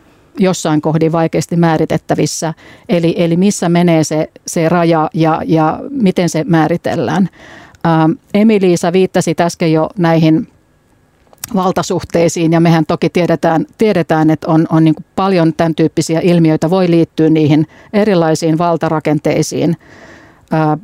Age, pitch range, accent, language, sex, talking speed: 50-69, 160-180 Hz, native, Finnish, female, 120 wpm